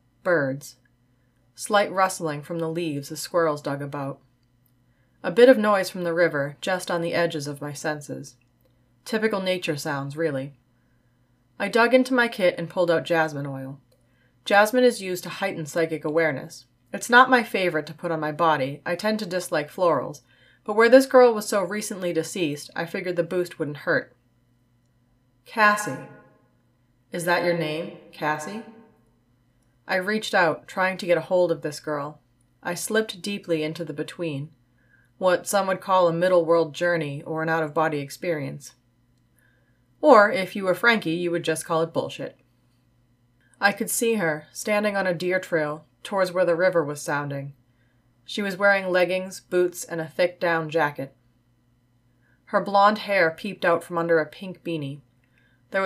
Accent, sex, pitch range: American, female, 130-185 Hz